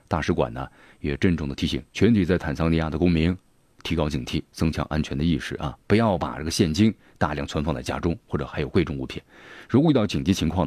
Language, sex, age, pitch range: Chinese, male, 30-49, 75-95 Hz